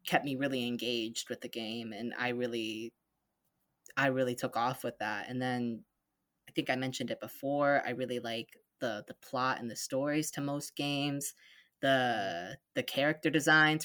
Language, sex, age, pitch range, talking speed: English, female, 20-39, 125-155 Hz, 175 wpm